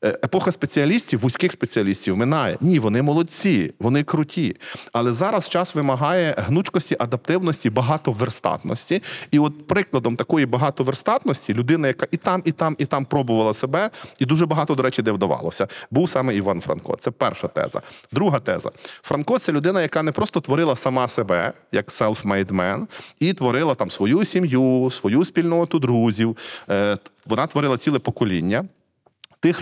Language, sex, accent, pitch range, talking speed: Ukrainian, male, native, 115-165 Hz, 150 wpm